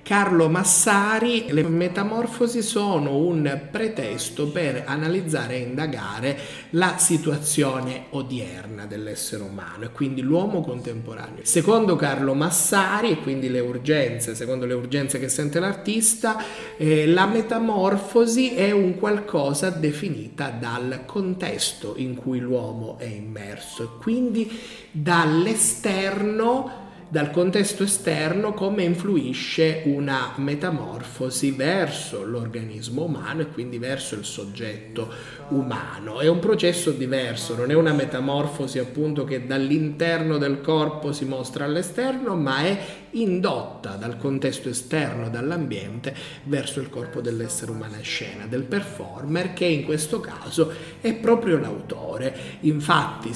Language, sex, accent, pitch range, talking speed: Italian, male, native, 130-185 Hz, 120 wpm